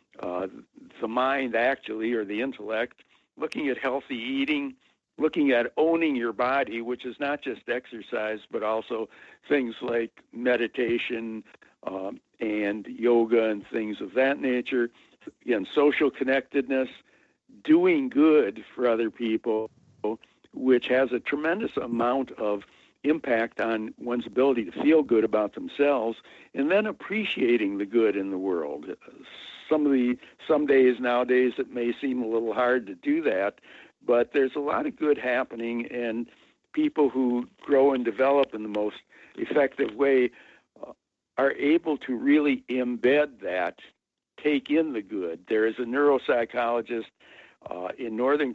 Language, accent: English, American